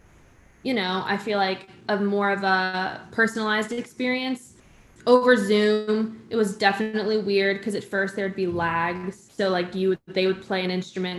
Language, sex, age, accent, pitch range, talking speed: English, female, 20-39, American, 185-225 Hz, 165 wpm